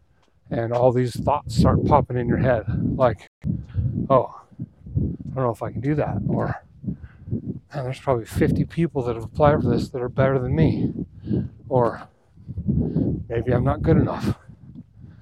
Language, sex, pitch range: English, male, 120-150 Hz